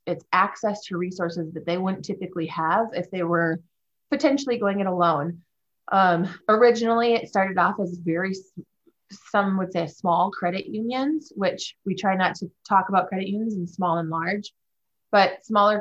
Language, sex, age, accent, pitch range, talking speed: English, female, 20-39, American, 175-200 Hz, 165 wpm